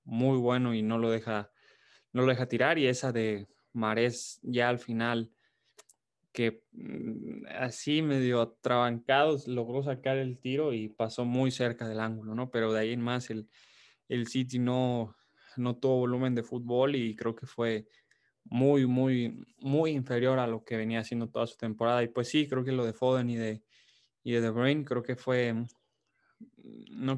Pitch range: 115-130 Hz